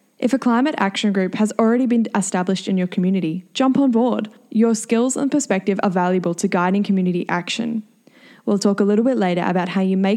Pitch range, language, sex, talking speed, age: 185-235 Hz, English, female, 205 wpm, 10-29